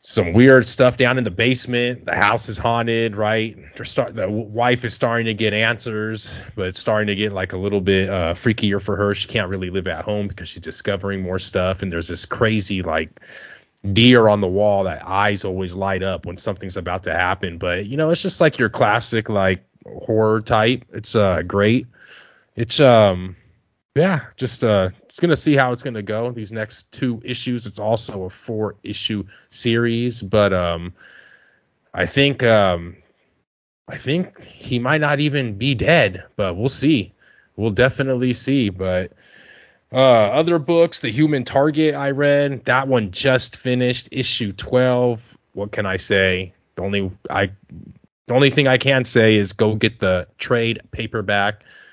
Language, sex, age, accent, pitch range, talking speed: English, male, 20-39, American, 95-125 Hz, 175 wpm